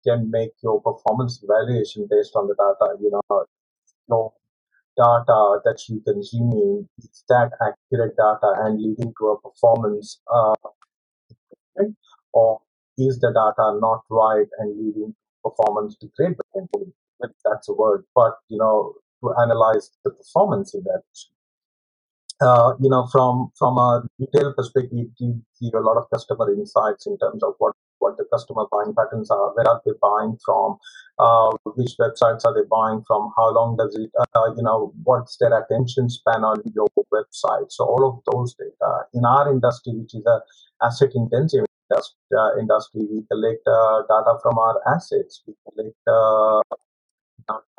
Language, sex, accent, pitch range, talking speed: English, male, Indian, 110-185 Hz, 160 wpm